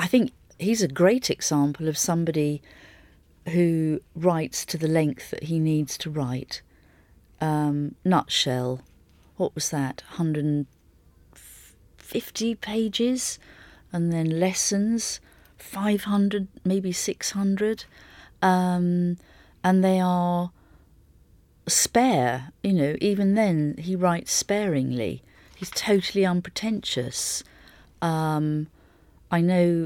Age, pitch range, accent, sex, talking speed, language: 40-59, 140-175 Hz, British, female, 95 wpm, English